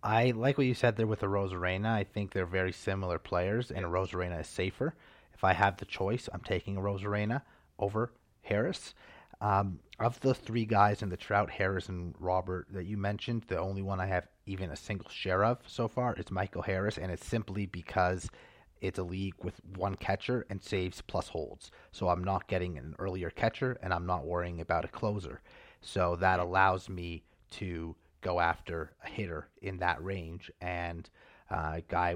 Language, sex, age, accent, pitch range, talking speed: English, male, 30-49, American, 85-100 Hz, 190 wpm